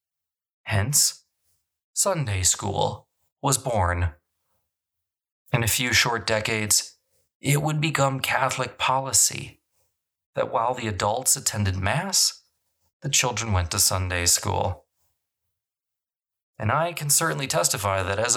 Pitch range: 90-130 Hz